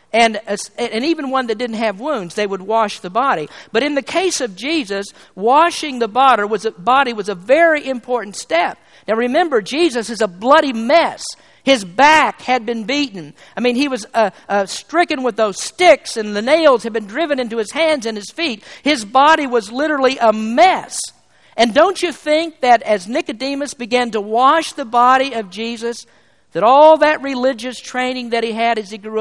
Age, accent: 50-69, American